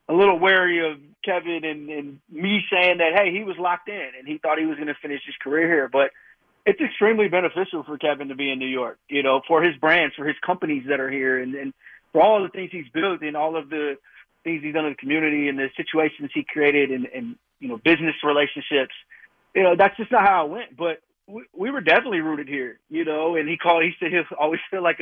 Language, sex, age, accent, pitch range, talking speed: English, male, 30-49, American, 145-180 Hz, 245 wpm